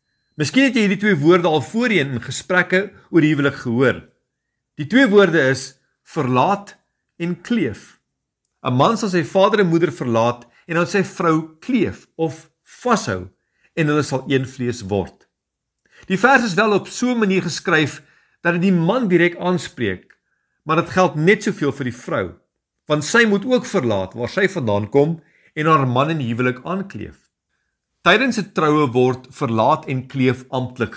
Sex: male